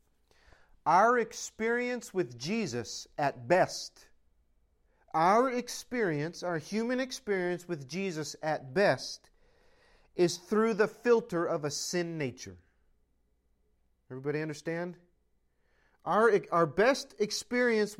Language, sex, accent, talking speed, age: English, male, American, 95 wpm, 40-59